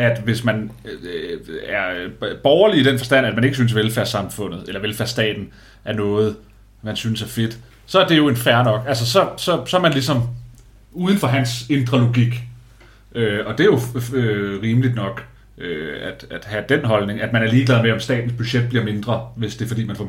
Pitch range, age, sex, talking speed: 110-130 Hz, 30-49, male, 205 wpm